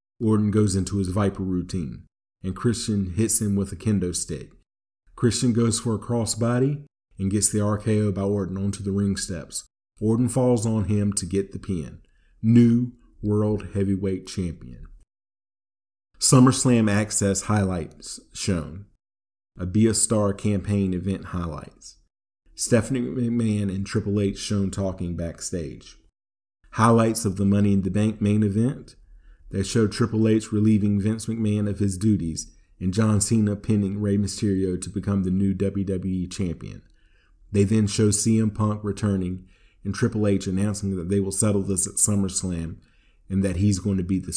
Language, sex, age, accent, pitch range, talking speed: English, male, 40-59, American, 90-105 Hz, 155 wpm